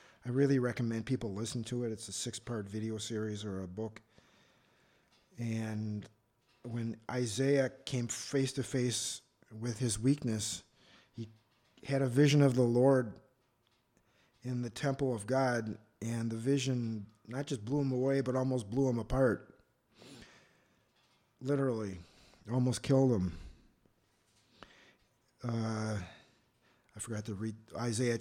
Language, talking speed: English, 125 wpm